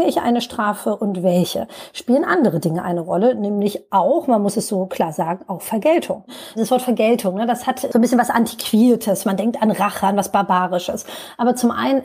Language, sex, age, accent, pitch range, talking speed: German, female, 30-49, German, 200-245 Hz, 200 wpm